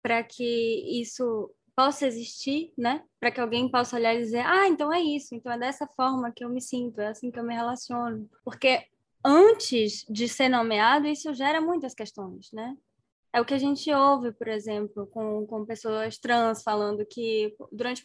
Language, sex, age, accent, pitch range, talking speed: Portuguese, female, 10-29, Brazilian, 215-270 Hz, 185 wpm